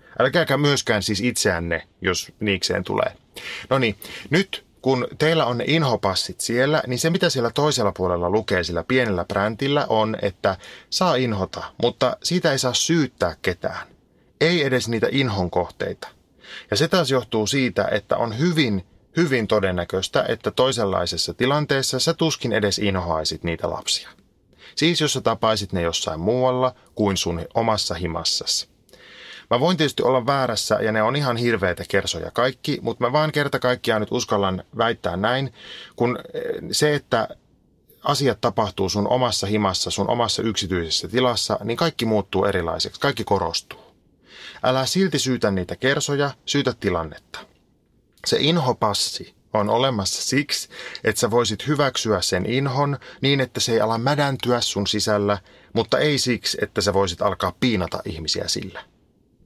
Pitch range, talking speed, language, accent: 100-135 Hz, 145 wpm, Finnish, native